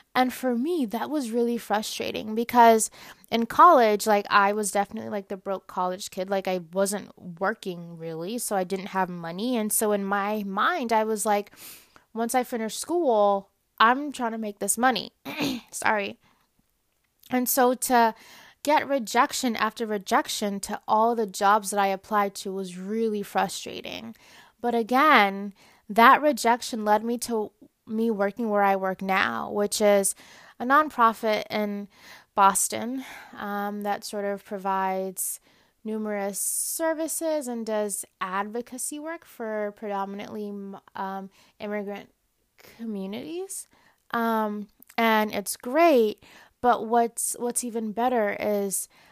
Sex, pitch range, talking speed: female, 200-240 Hz, 135 wpm